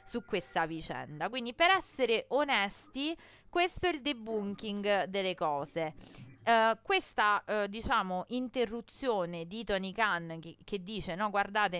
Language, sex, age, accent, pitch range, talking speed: Italian, female, 30-49, native, 175-255 Hz, 130 wpm